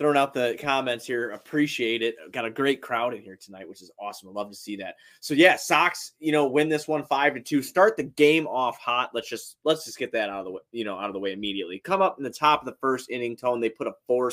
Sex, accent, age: male, American, 20-39